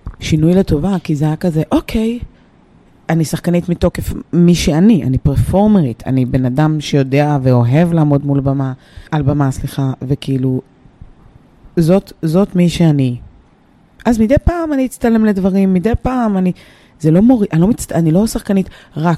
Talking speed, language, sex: 150 wpm, Hebrew, female